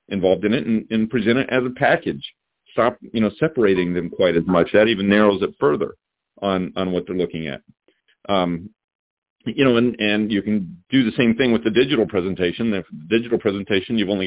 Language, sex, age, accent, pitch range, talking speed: English, male, 40-59, American, 85-105 Hz, 205 wpm